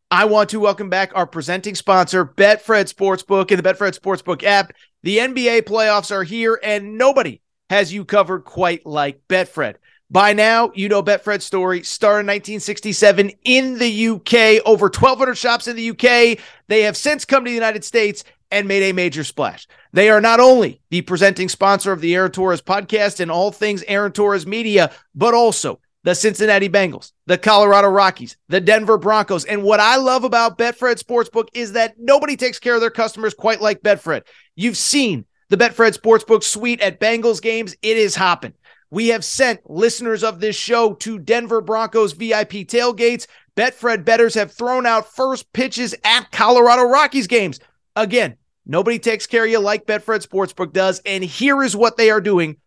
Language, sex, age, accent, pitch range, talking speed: English, male, 40-59, American, 195-230 Hz, 180 wpm